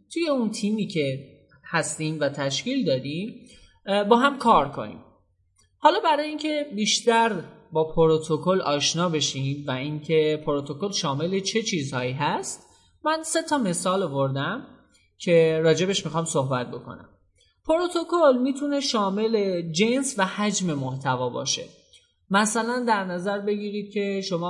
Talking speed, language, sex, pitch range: 125 wpm, Persian, male, 140-200 Hz